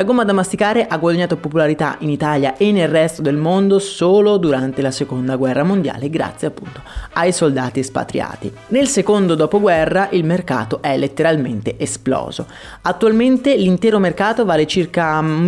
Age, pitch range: 30-49, 145-195 Hz